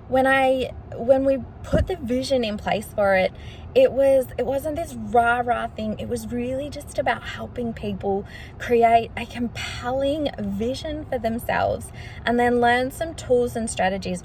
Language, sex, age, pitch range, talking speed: English, female, 10-29, 210-270 Hz, 160 wpm